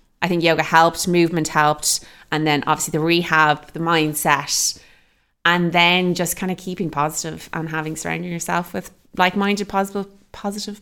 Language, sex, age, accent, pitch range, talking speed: English, female, 20-39, Irish, 160-195 Hz, 150 wpm